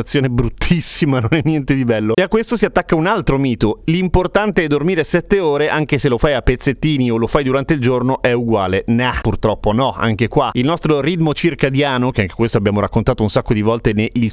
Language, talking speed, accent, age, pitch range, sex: Italian, 220 wpm, native, 30-49, 120-160 Hz, male